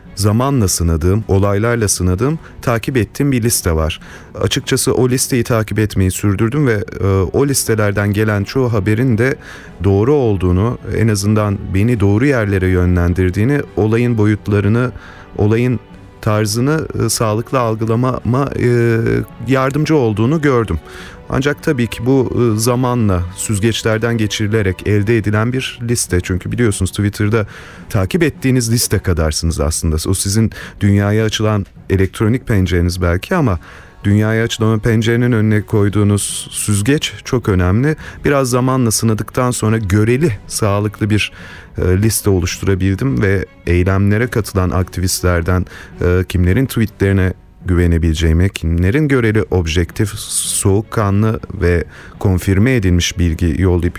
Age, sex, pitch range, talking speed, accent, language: 30-49, male, 95-115 Hz, 115 wpm, native, Turkish